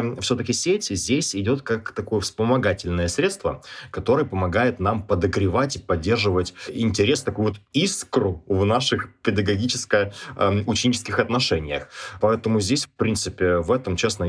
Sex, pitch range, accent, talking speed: male, 95-120 Hz, native, 120 wpm